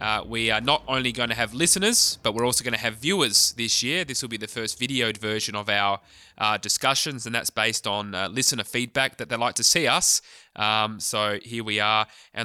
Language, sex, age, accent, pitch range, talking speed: English, male, 20-39, Australian, 105-125 Hz, 230 wpm